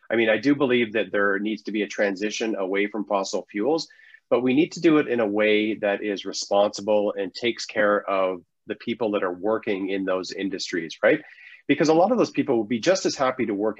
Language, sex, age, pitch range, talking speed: English, male, 30-49, 105-140 Hz, 235 wpm